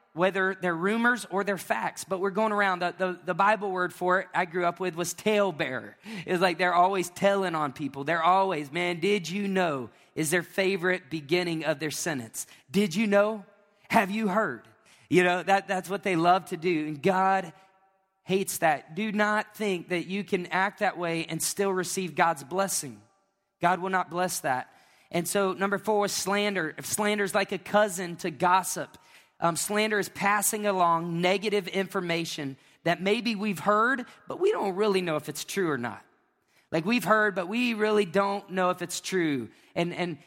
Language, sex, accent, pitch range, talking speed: English, male, American, 165-195 Hz, 190 wpm